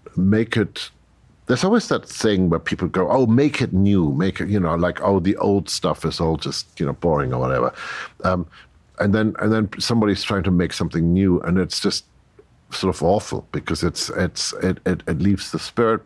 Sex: male